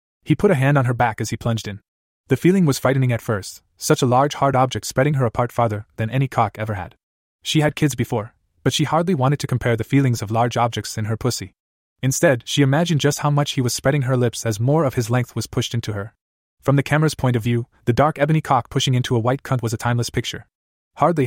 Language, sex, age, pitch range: English, male, 20-39, 110-140 Hz